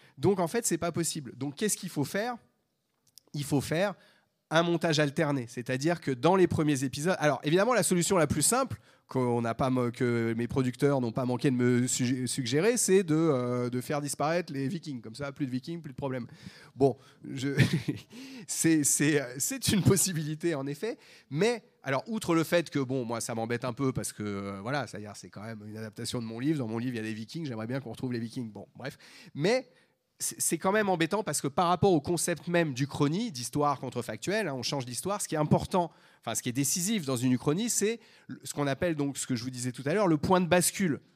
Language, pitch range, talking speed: French, 125-175 Hz, 225 wpm